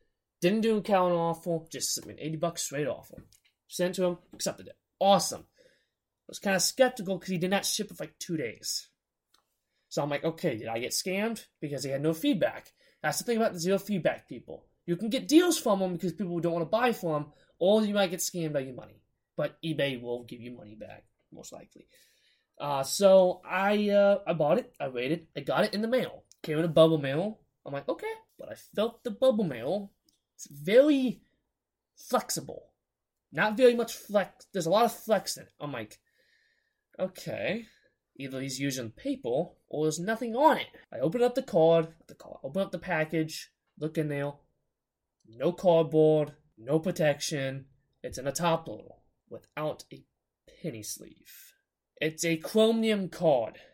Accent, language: American, English